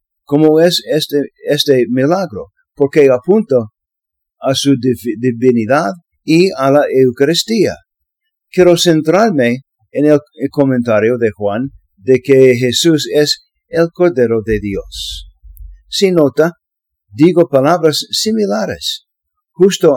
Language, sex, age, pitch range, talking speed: English, male, 50-69, 115-165 Hz, 110 wpm